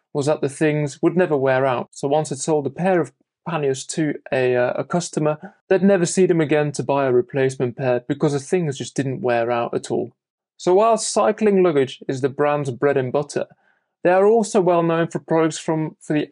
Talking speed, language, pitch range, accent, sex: 220 wpm, English, 135-180 Hz, British, male